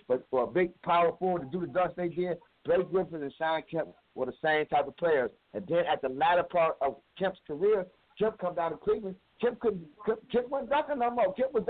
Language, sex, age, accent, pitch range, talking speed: English, male, 50-69, American, 145-200 Hz, 235 wpm